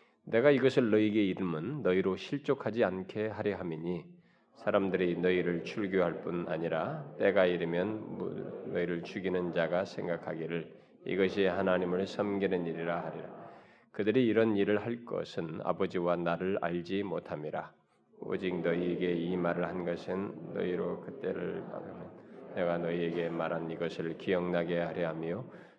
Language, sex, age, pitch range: Korean, male, 20-39, 85-100 Hz